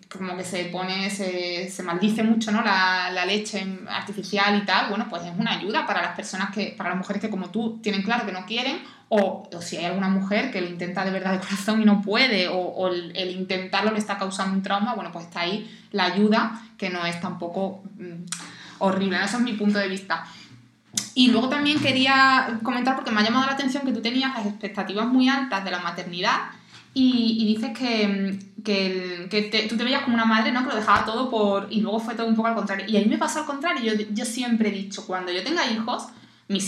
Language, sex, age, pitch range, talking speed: Spanish, female, 20-39, 190-235 Hz, 235 wpm